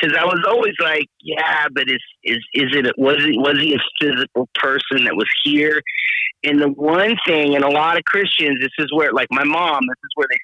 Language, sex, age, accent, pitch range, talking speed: English, male, 30-49, American, 120-155 Hz, 230 wpm